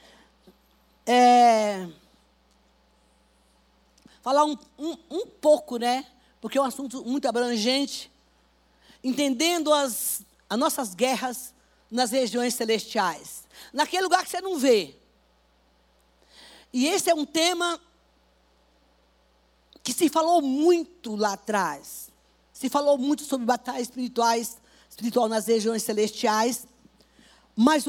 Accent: Brazilian